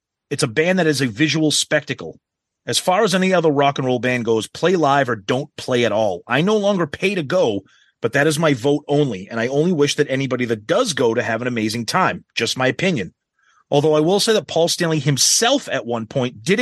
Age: 30-49